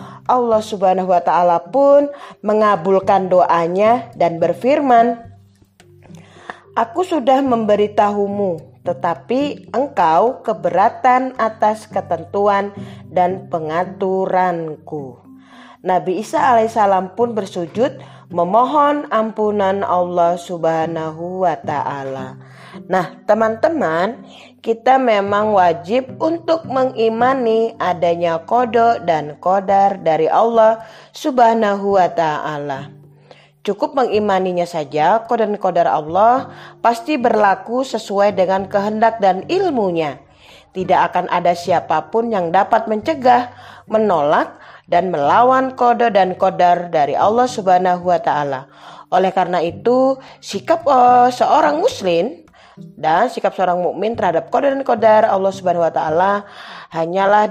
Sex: female